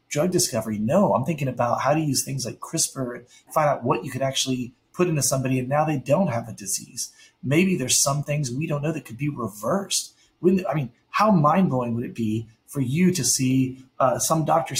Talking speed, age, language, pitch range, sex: 220 wpm, 30-49, English, 120-155 Hz, male